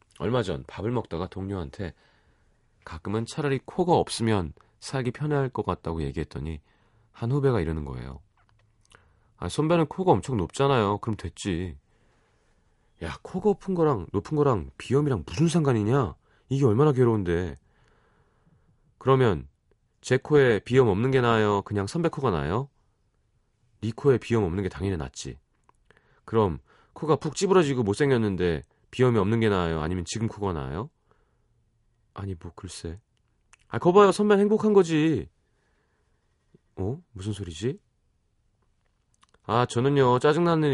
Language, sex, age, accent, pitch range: Korean, male, 30-49, native, 95-130 Hz